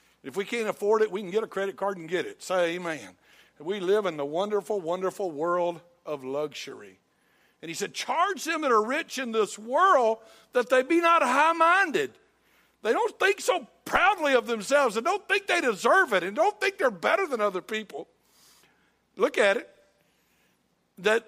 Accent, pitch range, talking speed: American, 215-315 Hz, 185 wpm